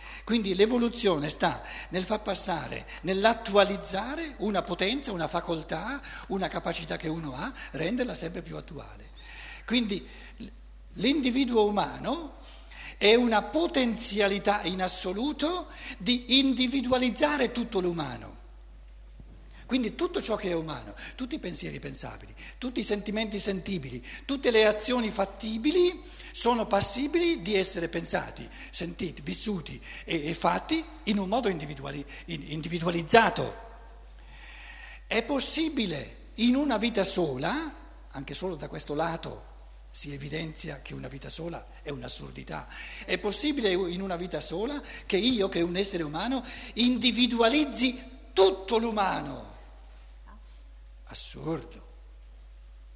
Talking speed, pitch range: 110 wpm, 165-245 Hz